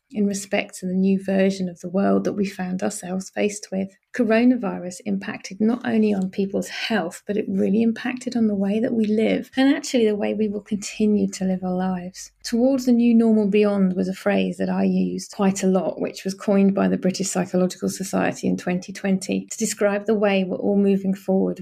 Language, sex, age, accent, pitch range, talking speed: English, female, 30-49, British, 185-210 Hz, 210 wpm